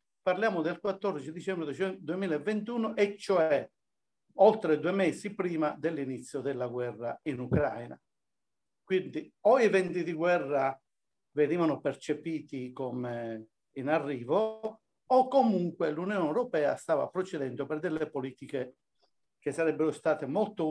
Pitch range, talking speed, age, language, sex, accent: 140-190 Hz, 115 wpm, 50-69, Italian, male, native